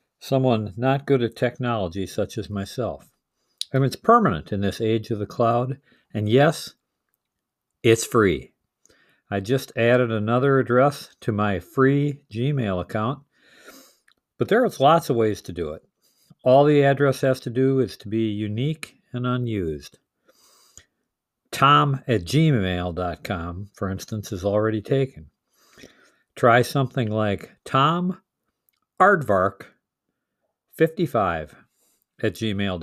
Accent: American